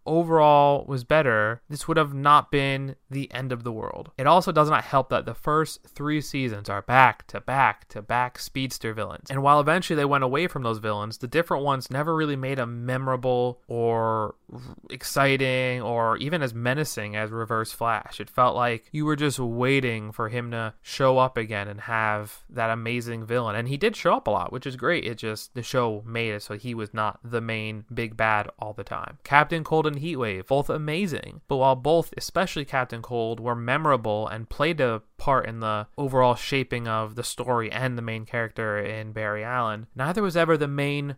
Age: 20-39